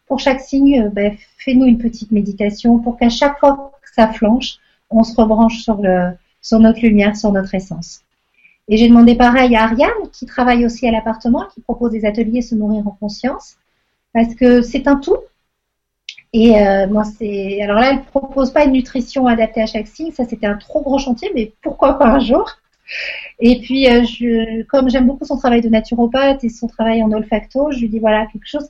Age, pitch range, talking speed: 40-59, 225-275 Hz, 205 wpm